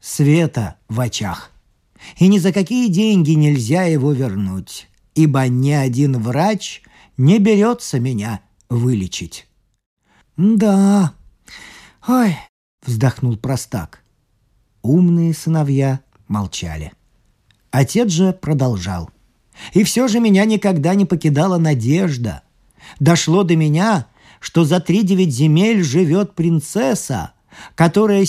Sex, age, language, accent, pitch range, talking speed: male, 40-59, Russian, native, 135-195 Hz, 100 wpm